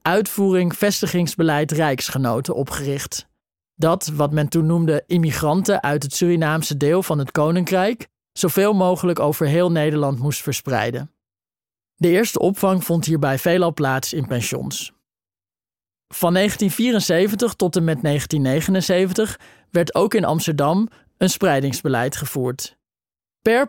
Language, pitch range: Dutch, 150-195 Hz